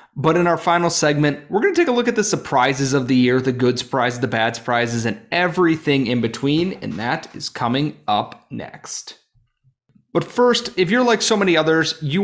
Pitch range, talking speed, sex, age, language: 125-175 Hz, 205 wpm, male, 30-49, English